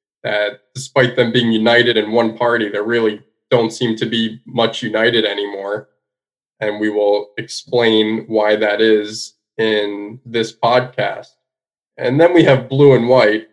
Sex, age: male, 20-39